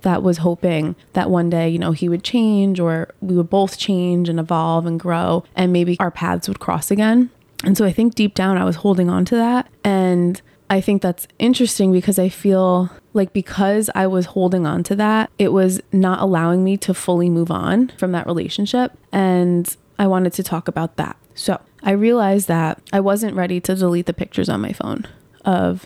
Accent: American